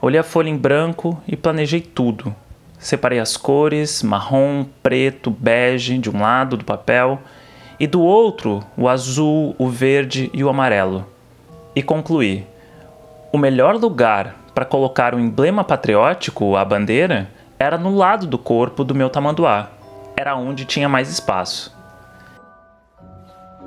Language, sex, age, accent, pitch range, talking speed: Portuguese, male, 30-49, Brazilian, 115-150 Hz, 135 wpm